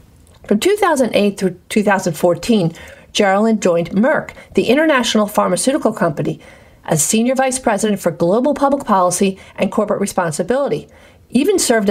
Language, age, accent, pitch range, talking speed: English, 50-69, American, 180-245 Hz, 120 wpm